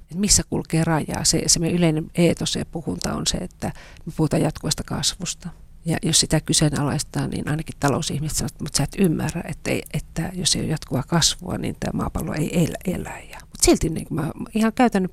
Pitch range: 145-175 Hz